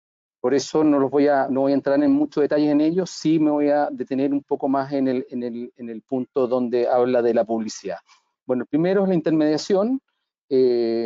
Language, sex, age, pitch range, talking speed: Spanish, male, 40-59, 120-150 Hz, 220 wpm